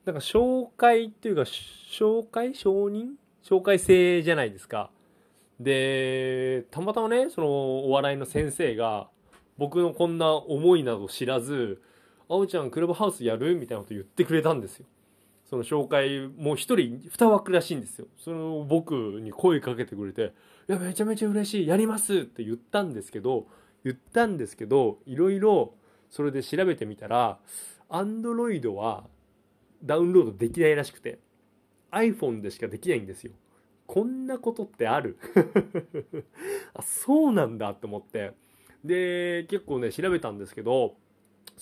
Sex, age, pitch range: male, 20-39, 125-200 Hz